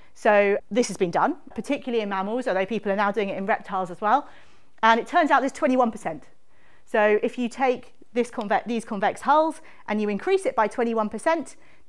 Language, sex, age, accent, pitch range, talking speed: English, female, 40-59, British, 195-270 Hz, 195 wpm